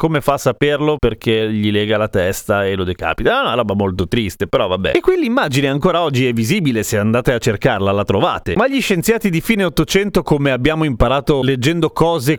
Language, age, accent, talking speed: Italian, 30-49, native, 205 wpm